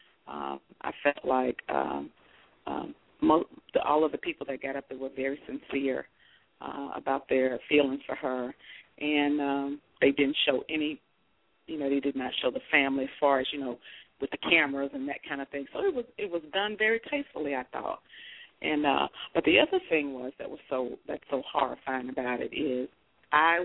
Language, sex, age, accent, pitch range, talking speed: English, female, 40-59, American, 135-155 Hz, 200 wpm